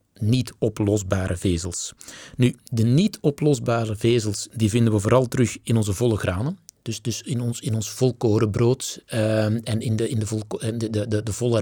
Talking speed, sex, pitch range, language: 160 wpm, male, 105-130 Hz, Dutch